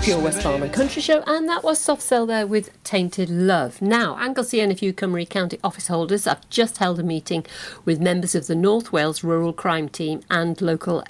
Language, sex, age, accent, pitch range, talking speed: English, female, 50-69, British, 165-210 Hz, 210 wpm